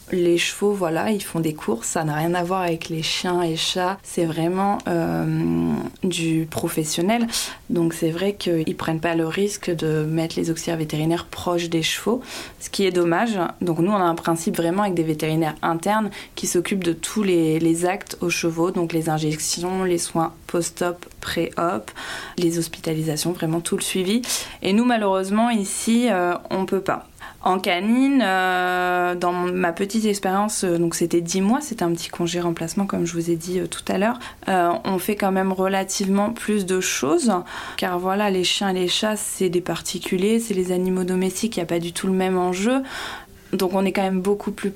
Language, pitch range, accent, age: French, 170-195 Hz, French, 20-39